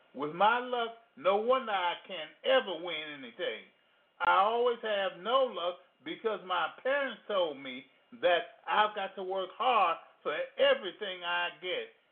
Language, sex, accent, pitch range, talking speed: English, male, American, 190-265 Hz, 150 wpm